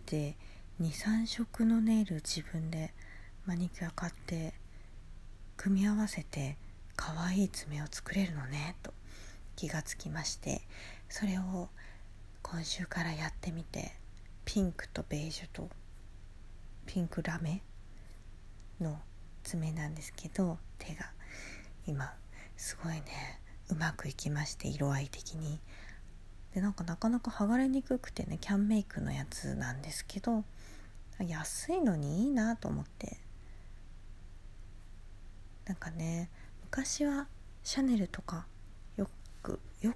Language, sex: Japanese, female